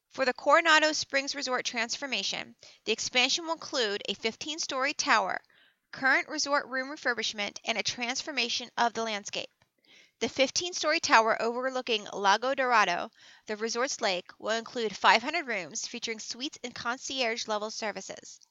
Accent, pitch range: American, 220-280 Hz